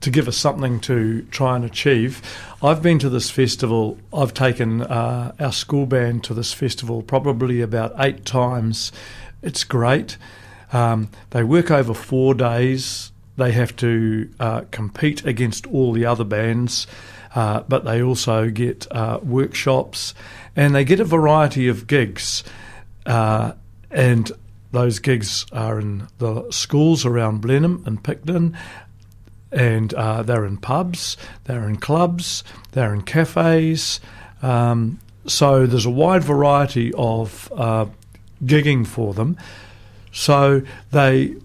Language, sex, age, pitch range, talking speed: English, male, 50-69, 110-135 Hz, 135 wpm